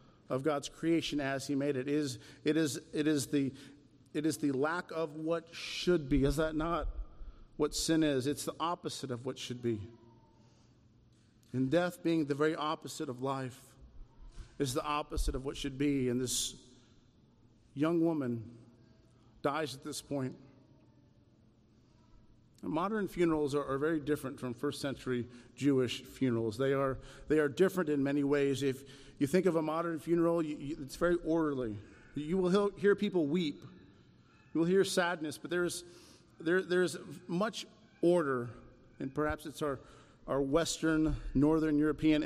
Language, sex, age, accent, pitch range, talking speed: English, male, 50-69, American, 130-160 Hz, 160 wpm